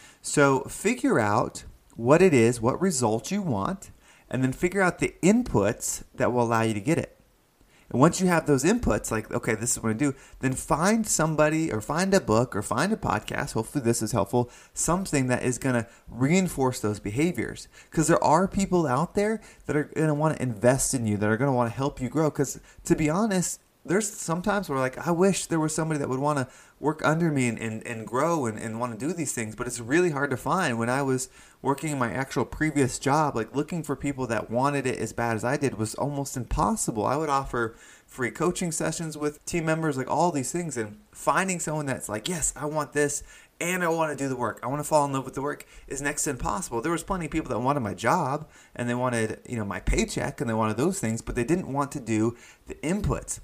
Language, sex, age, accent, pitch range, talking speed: English, male, 20-39, American, 120-160 Hz, 240 wpm